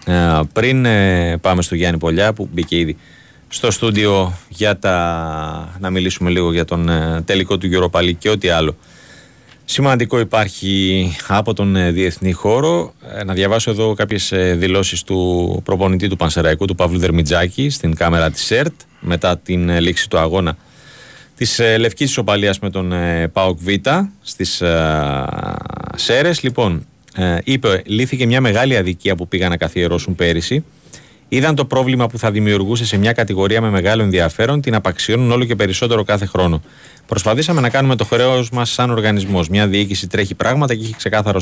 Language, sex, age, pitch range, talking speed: Greek, male, 30-49, 90-115 Hz, 165 wpm